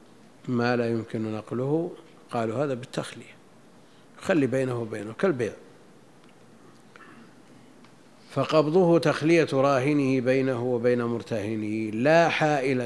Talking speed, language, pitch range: 90 wpm, Arabic, 115-135 Hz